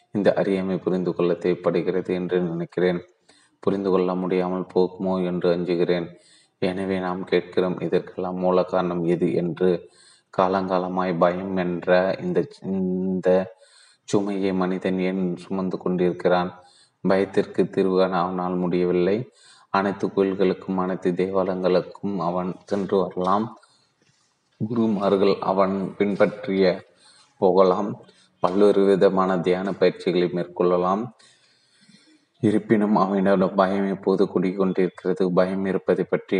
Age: 20-39